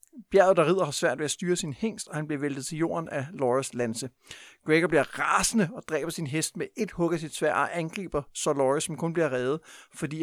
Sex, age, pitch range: male, 60-79, 125-170 Hz